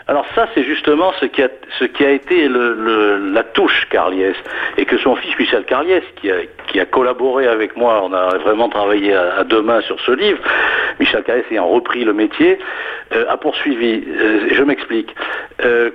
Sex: male